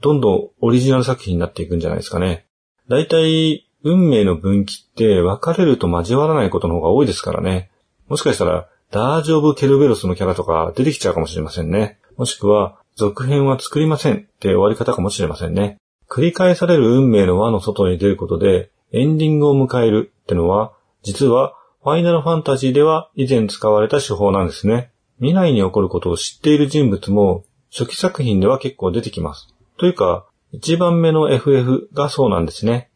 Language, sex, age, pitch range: Japanese, male, 30-49, 95-145 Hz